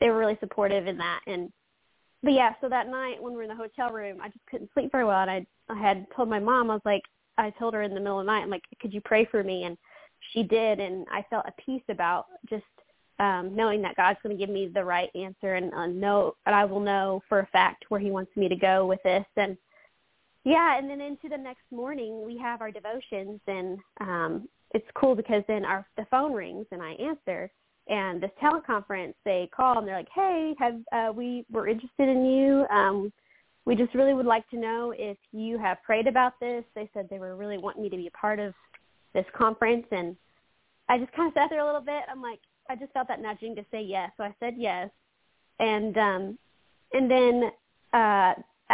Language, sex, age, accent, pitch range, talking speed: English, female, 20-39, American, 195-245 Hz, 230 wpm